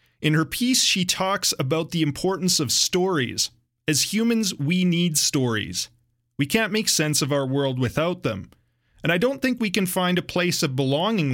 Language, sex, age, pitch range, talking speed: English, male, 30-49, 125-175 Hz, 185 wpm